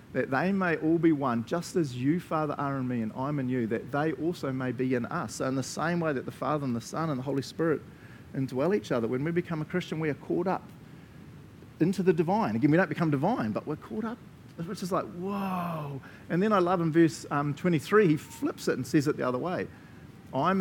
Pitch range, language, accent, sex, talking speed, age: 135-170 Hz, English, Australian, male, 250 wpm, 40-59